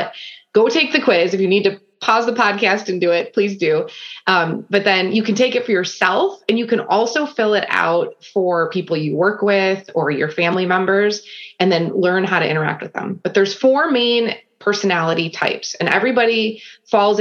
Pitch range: 170-220 Hz